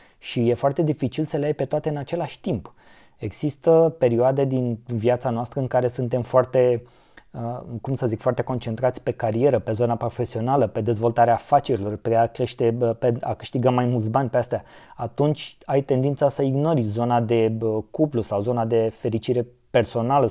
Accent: native